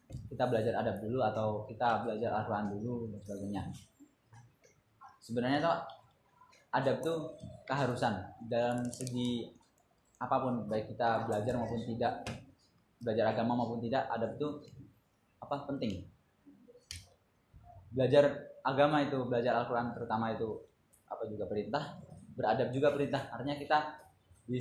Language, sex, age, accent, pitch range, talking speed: Indonesian, male, 20-39, native, 110-130 Hz, 115 wpm